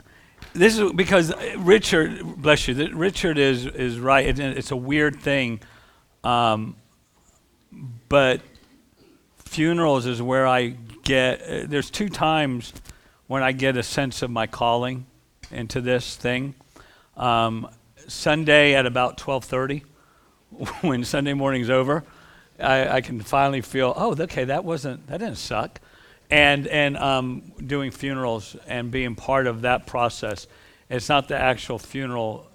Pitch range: 115-135 Hz